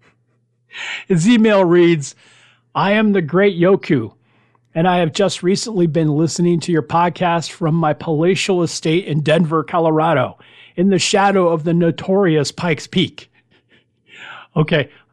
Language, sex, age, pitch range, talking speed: English, male, 40-59, 155-200 Hz, 135 wpm